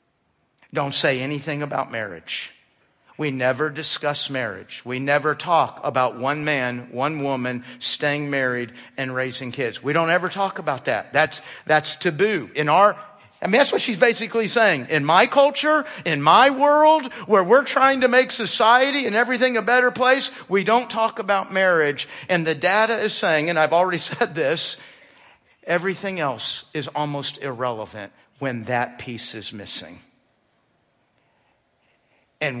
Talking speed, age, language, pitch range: 155 wpm, 50-69, English, 135-205 Hz